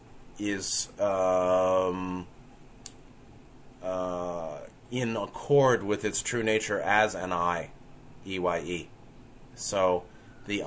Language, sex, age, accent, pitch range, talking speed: English, male, 30-49, American, 100-125 Hz, 85 wpm